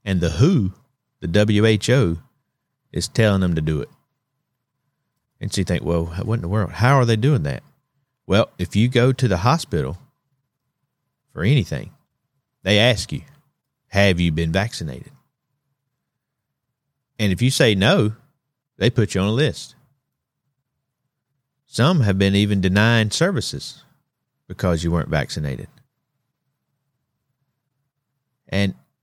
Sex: male